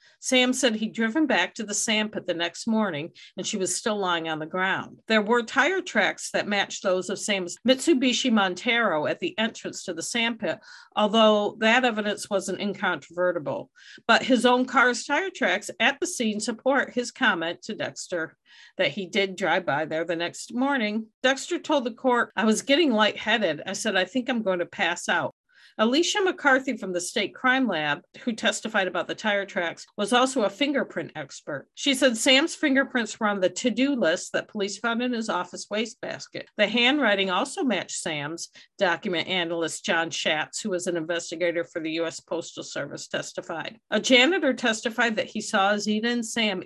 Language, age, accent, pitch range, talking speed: English, 50-69, American, 185-260 Hz, 185 wpm